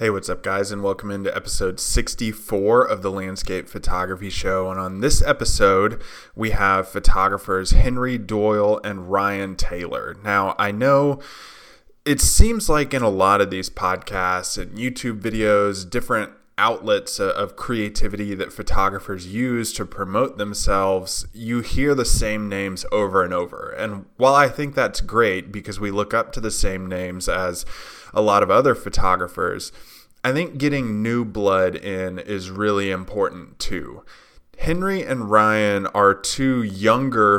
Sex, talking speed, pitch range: male, 150 wpm, 95-120 Hz